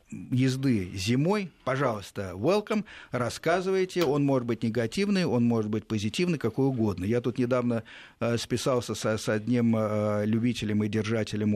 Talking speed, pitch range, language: 135 wpm, 105-145 Hz, Russian